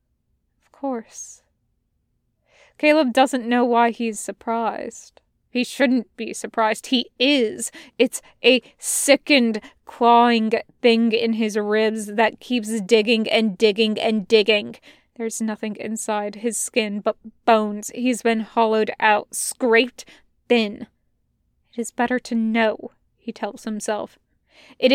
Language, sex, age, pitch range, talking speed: English, female, 20-39, 215-240 Hz, 120 wpm